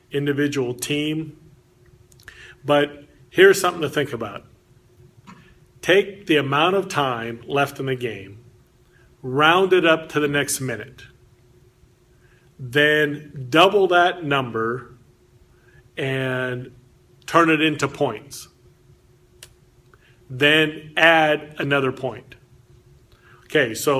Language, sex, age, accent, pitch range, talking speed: English, male, 40-59, American, 120-155 Hz, 100 wpm